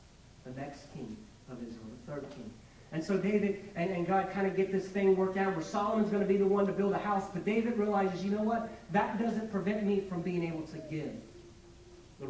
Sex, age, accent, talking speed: male, 30-49, American, 235 wpm